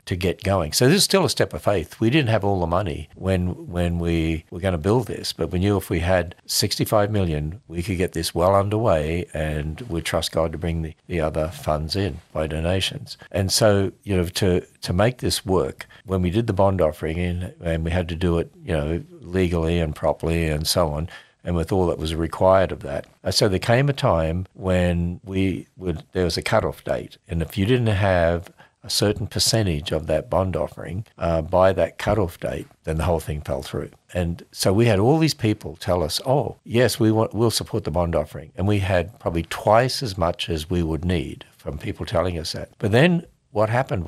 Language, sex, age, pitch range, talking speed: English, male, 60-79, 80-100 Hz, 220 wpm